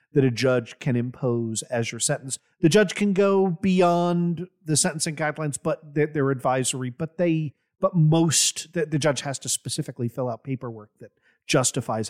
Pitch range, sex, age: 120-160 Hz, male, 40-59